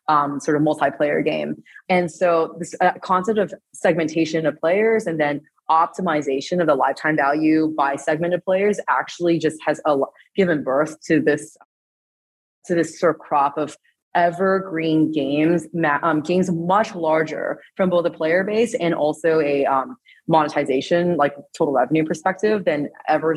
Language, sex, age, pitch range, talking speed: English, female, 20-39, 145-180 Hz, 155 wpm